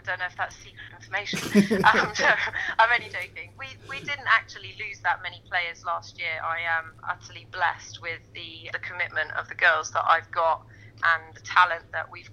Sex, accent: female, British